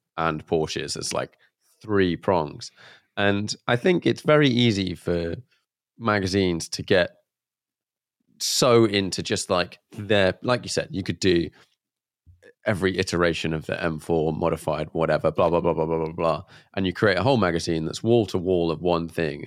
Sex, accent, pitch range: male, British, 85-120 Hz